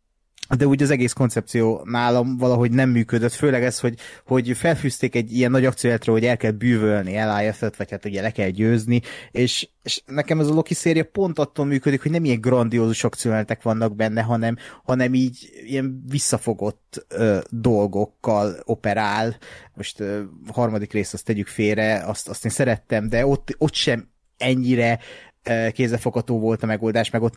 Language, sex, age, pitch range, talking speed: Hungarian, male, 30-49, 110-130 Hz, 170 wpm